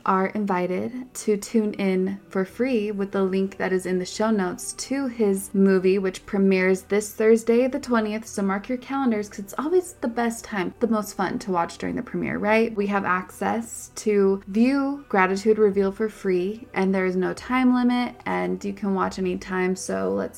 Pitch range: 190-235 Hz